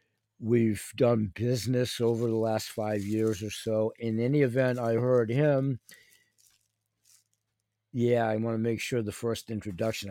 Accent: American